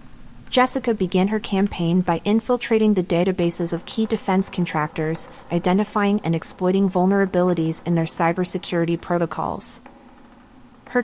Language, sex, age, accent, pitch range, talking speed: English, female, 30-49, American, 170-215 Hz, 115 wpm